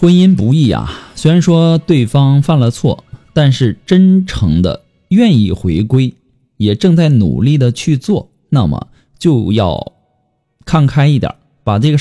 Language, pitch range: Chinese, 110-150 Hz